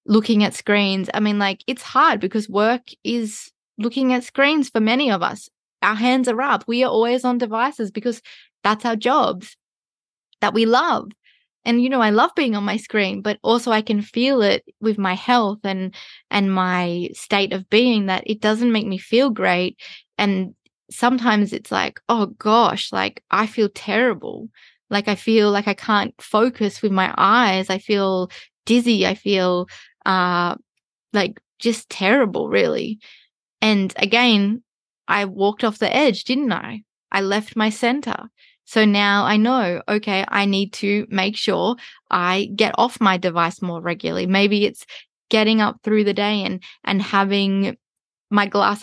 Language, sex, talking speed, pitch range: English, female, 170 wpm, 200-235 Hz